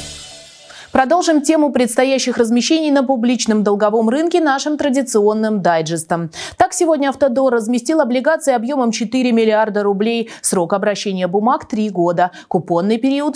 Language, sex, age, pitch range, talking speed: Russian, female, 20-39, 180-260 Hz, 125 wpm